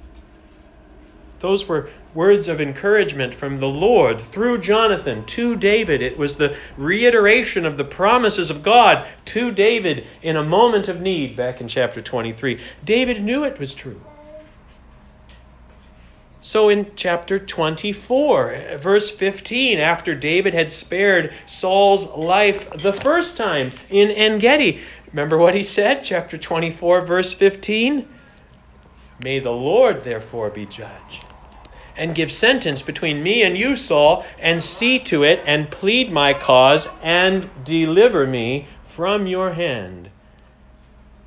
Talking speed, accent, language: 130 wpm, American, English